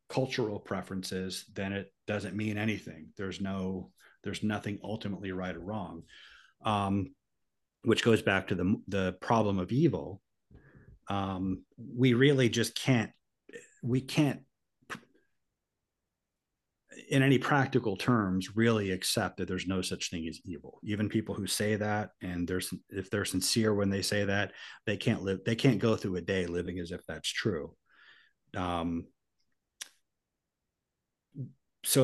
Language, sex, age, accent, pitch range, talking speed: English, male, 30-49, American, 95-115 Hz, 140 wpm